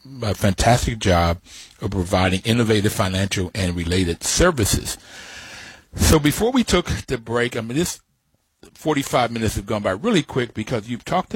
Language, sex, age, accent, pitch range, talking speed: English, male, 60-79, American, 105-145 Hz, 155 wpm